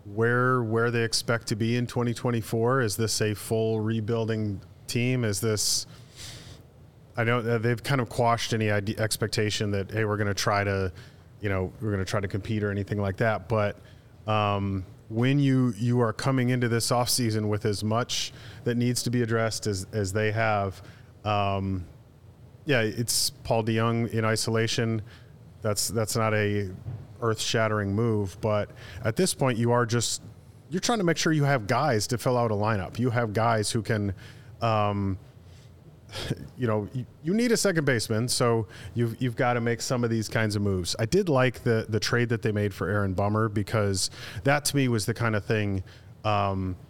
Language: English